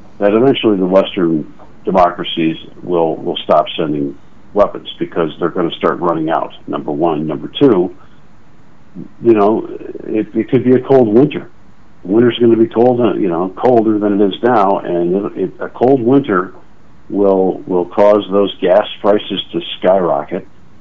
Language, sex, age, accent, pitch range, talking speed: English, male, 50-69, American, 85-105 Hz, 160 wpm